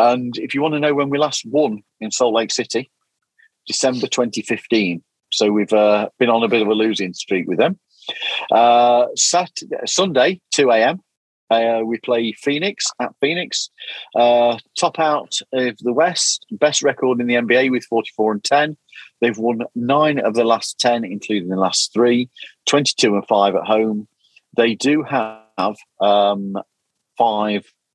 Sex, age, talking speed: male, 40-59, 155 wpm